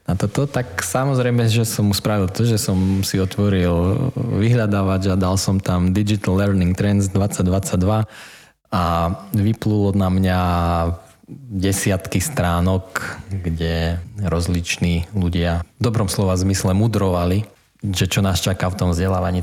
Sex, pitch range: male, 90-105 Hz